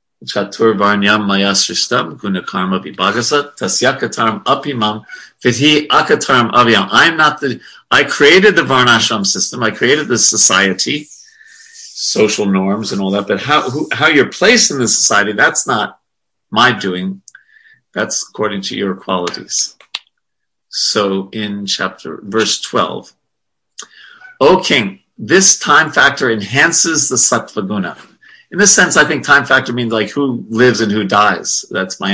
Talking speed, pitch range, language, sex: 120 wpm, 100-150 Hz, English, male